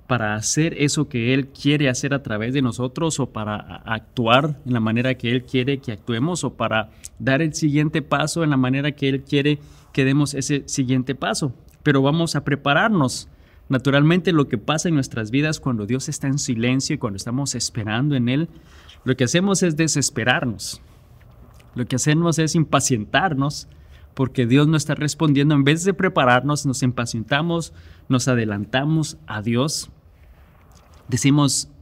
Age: 30-49